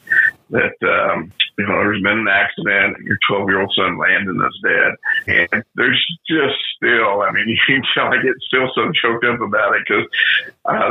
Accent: American